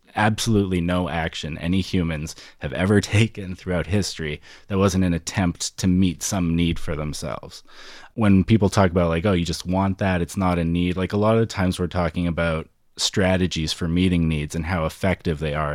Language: English